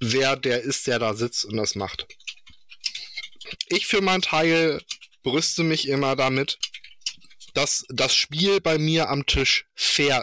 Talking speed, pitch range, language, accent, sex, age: 145 wpm, 120-170 Hz, German, German, male, 20-39